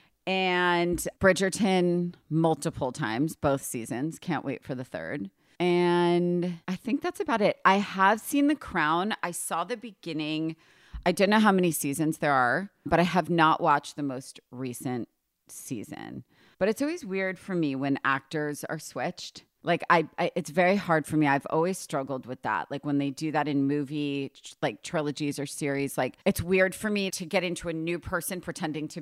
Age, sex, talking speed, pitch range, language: 30-49, female, 185 wpm, 145-185 Hz, English